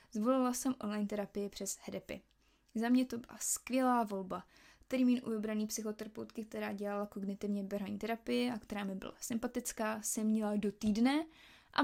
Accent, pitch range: native, 210-240 Hz